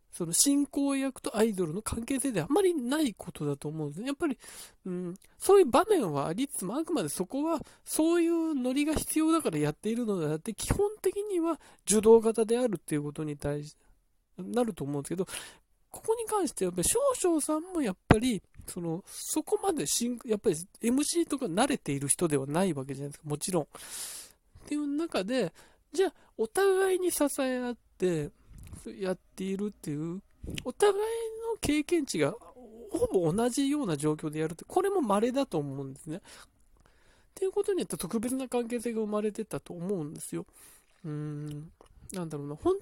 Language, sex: Japanese, male